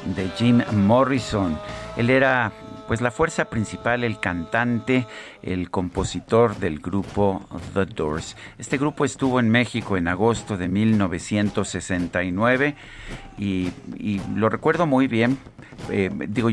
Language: Spanish